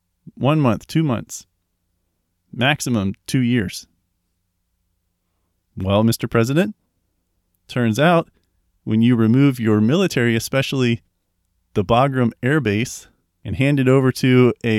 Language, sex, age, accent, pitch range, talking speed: English, male, 30-49, American, 90-125 Hz, 115 wpm